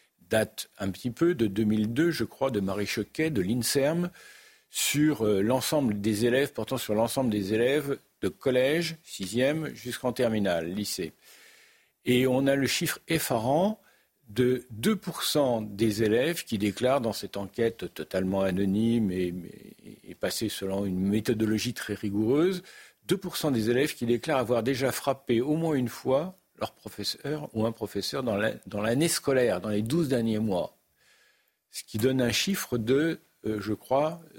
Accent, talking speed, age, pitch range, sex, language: French, 150 wpm, 50-69, 105-140 Hz, male, French